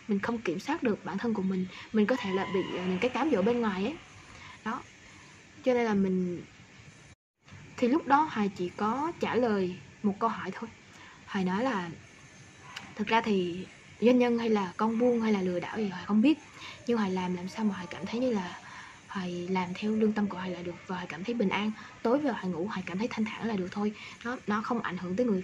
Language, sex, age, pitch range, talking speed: Vietnamese, female, 20-39, 185-240 Hz, 240 wpm